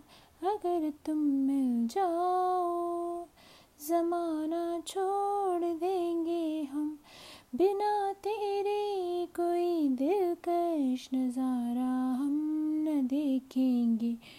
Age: 20-39